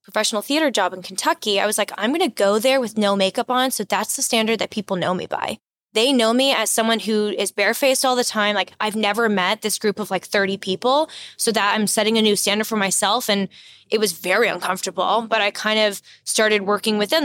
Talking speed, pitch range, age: 235 wpm, 195-230 Hz, 20-39